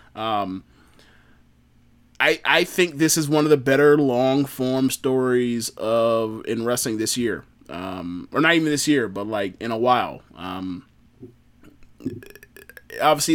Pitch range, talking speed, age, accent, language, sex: 110-145 Hz, 140 wpm, 30-49, American, English, male